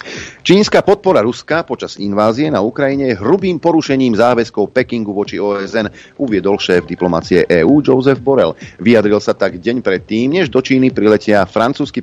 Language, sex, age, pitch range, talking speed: Slovak, male, 40-59, 95-125 Hz, 150 wpm